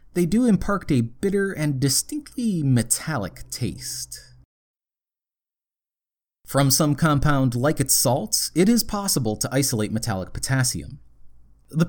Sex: male